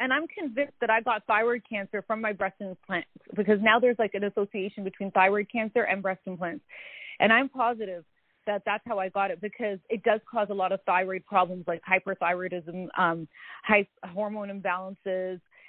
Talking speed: 185 wpm